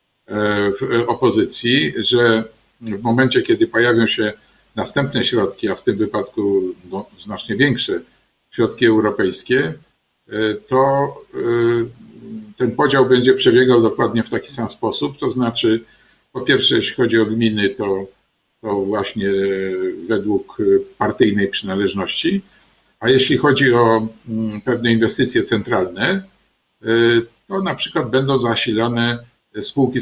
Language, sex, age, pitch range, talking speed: Polish, male, 50-69, 105-130 Hz, 110 wpm